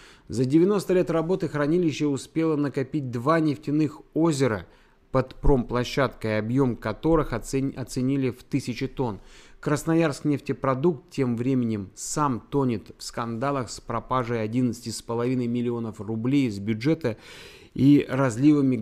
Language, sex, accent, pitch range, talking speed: Russian, male, native, 115-155 Hz, 115 wpm